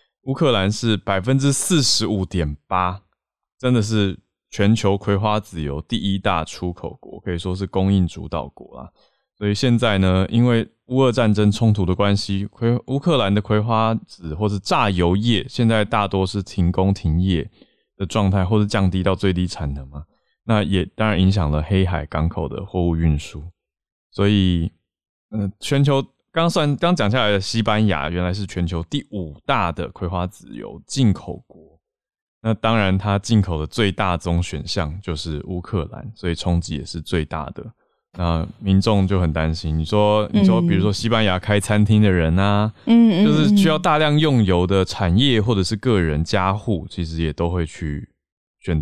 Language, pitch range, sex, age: Chinese, 85-110 Hz, male, 20-39